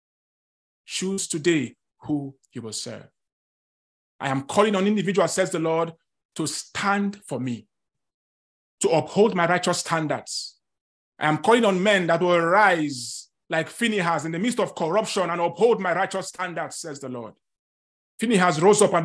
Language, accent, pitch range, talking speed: English, Nigerian, 150-185 Hz, 160 wpm